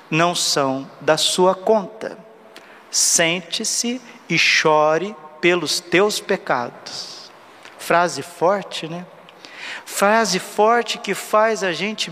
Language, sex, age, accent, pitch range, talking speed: Portuguese, male, 50-69, Brazilian, 160-190 Hz, 100 wpm